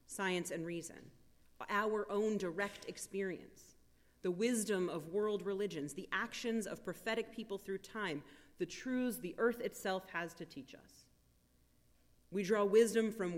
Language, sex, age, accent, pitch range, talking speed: English, female, 30-49, American, 165-215 Hz, 145 wpm